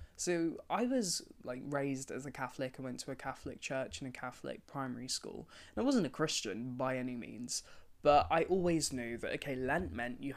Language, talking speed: English, 210 wpm